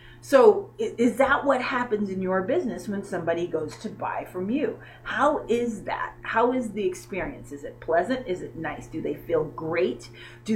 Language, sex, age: English, female, 30-49